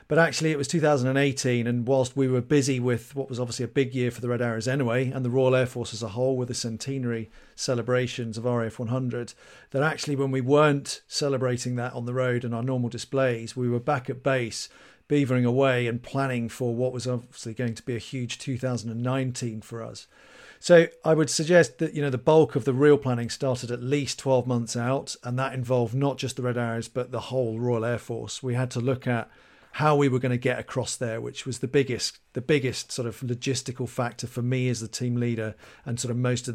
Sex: male